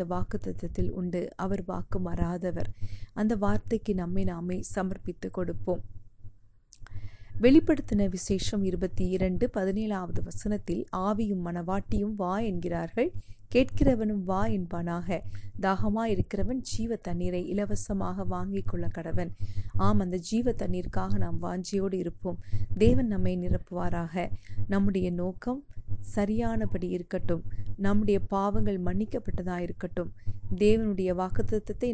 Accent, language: native, Tamil